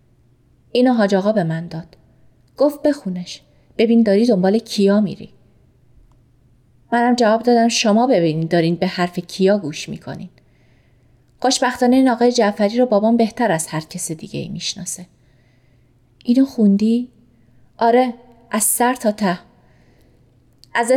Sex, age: female, 30-49